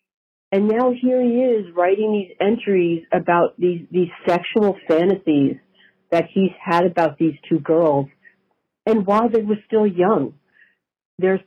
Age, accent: 50-69, American